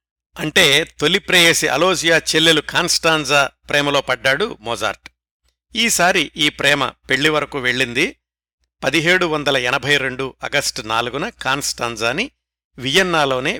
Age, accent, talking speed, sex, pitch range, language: 60-79, native, 90 wpm, male, 120-155 Hz, Telugu